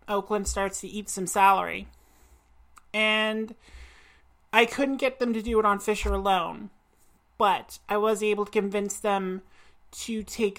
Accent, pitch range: American, 190-215 Hz